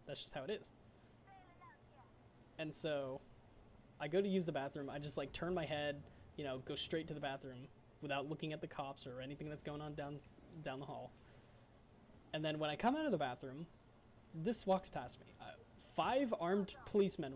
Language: English